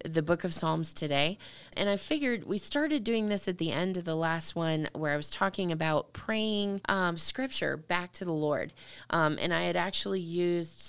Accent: American